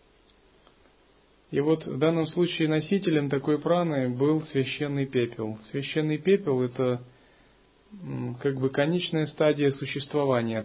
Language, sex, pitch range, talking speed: Russian, male, 125-150 Hz, 105 wpm